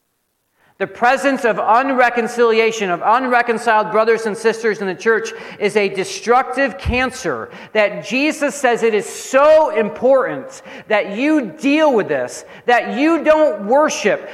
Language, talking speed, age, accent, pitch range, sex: English, 135 wpm, 40-59, American, 160-230 Hz, male